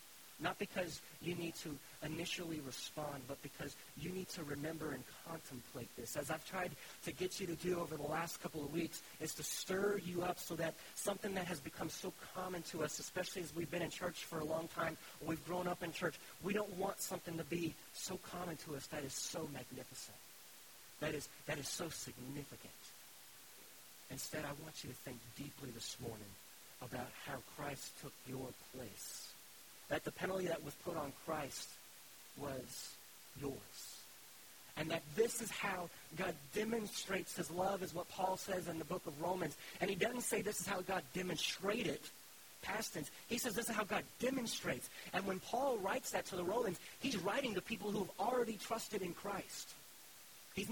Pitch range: 150-185 Hz